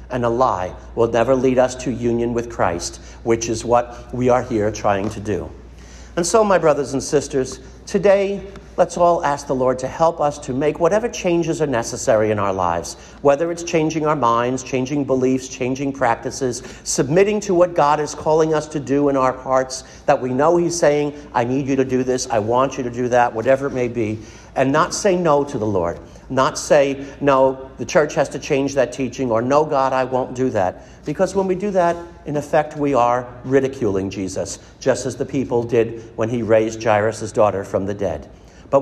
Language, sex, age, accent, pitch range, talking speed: English, male, 50-69, American, 115-155 Hz, 210 wpm